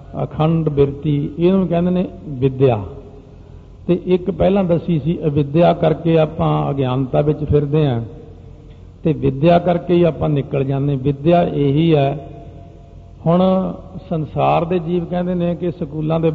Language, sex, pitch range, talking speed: Punjabi, male, 135-160 Hz, 140 wpm